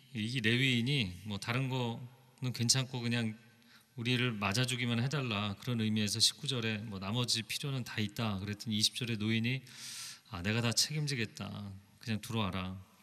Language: Korean